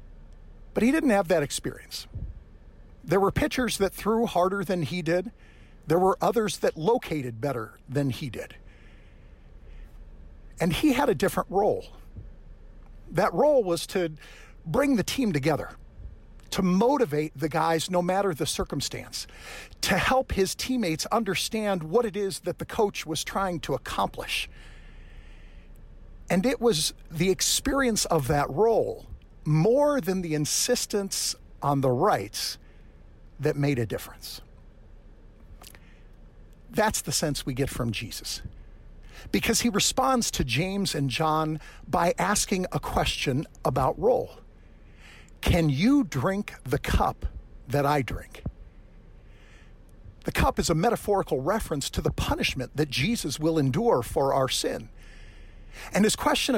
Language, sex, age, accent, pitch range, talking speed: English, male, 50-69, American, 145-205 Hz, 135 wpm